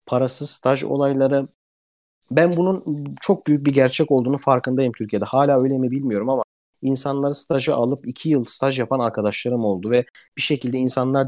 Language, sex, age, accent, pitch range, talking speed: Turkish, male, 50-69, native, 125-155 Hz, 160 wpm